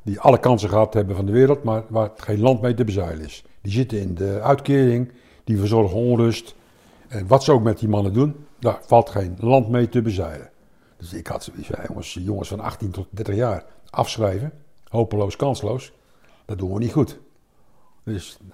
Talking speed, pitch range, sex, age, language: 195 wpm, 105-135 Hz, male, 60-79, Dutch